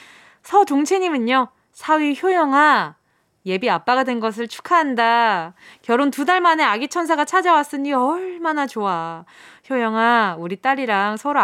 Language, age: Korean, 20-39